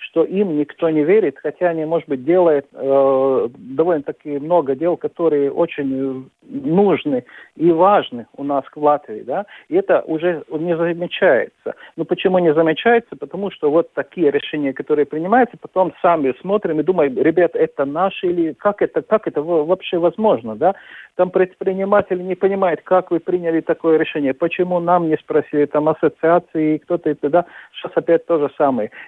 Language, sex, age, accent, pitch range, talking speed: Russian, male, 50-69, native, 150-180 Hz, 165 wpm